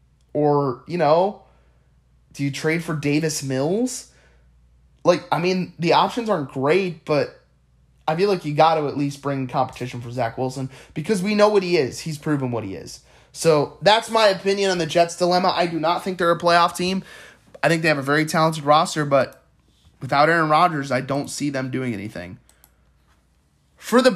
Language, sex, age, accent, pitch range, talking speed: English, male, 20-39, American, 125-175 Hz, 190 wpm